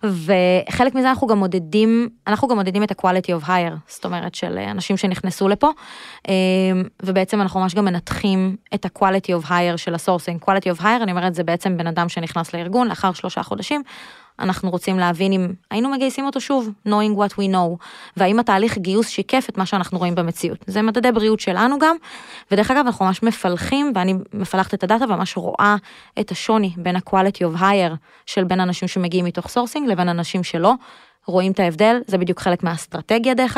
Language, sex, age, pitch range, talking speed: Hebrew, female, 20-39, 185-225 Hz, 185 wpm